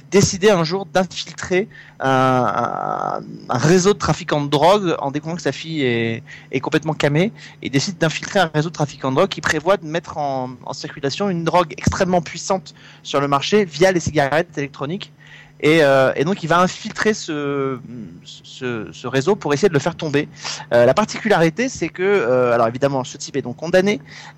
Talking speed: 190 wpm